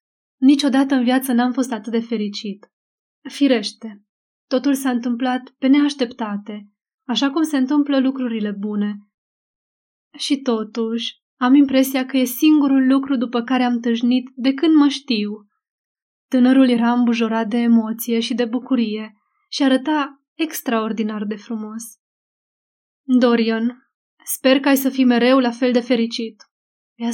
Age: 20-39